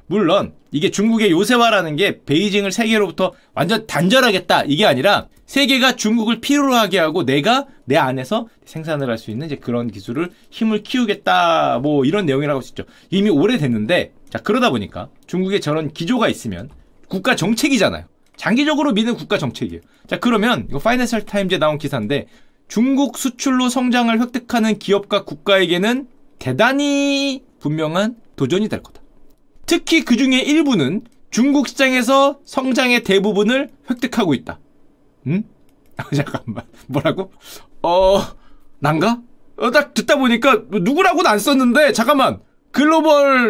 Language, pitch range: Korean, 185-265 Hz